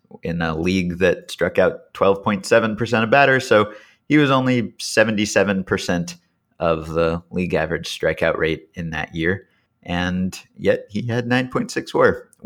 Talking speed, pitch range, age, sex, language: 135 wpm, 85-110 Hz, 30-49, male, English